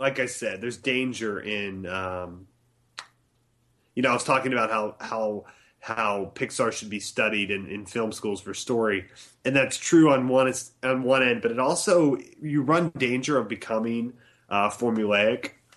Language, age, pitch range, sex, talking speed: English, 30-49, 105-130 Hz, male, 170 wpm